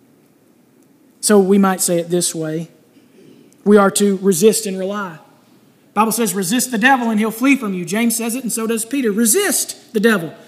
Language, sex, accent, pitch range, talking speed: English, male, American, 205-265 Hz, 195 wpm